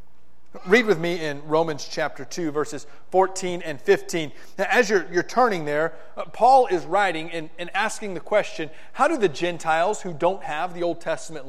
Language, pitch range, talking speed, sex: English, 140-195 Hz, 180 wpm, male